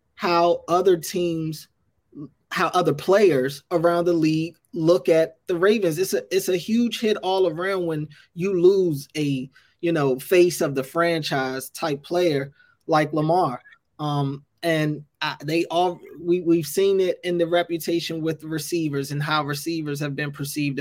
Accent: American